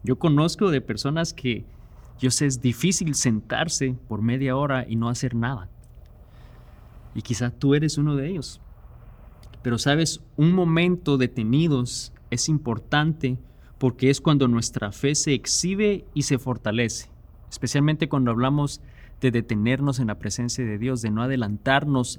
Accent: Mexican